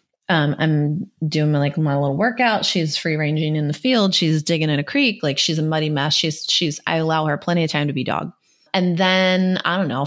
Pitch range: 155-195 Hz